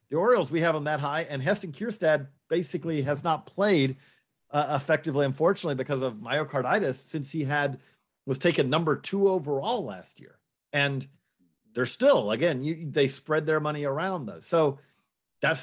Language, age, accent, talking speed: English, 40-59, American, 165 wpm